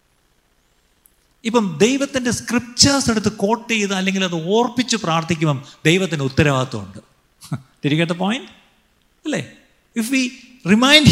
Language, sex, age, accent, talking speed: Malayalam, male, 50-69, native, 95 wpm